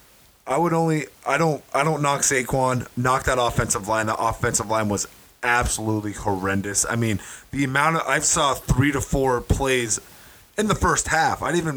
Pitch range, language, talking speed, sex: 110-135 Hz, English, 185 wpm, male